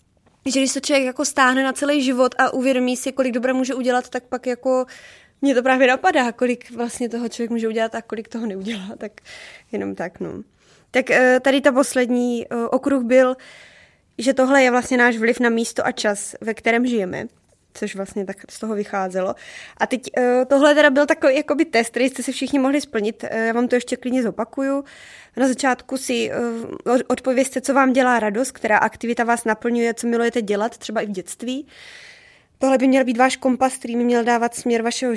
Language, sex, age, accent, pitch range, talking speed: Czech, female, 20-39, native, 230-260 Hz, 185 wpm